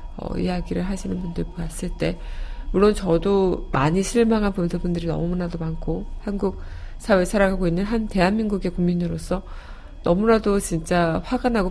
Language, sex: Korean, female